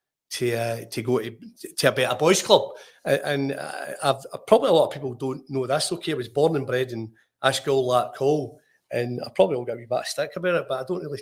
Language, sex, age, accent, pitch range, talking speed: English, male, 40-59, British, 125-155 Hz, 245 wpm